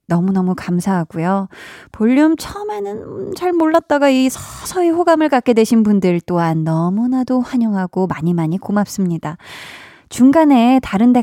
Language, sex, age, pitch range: Korean, female, 20-39, 190-275 Hz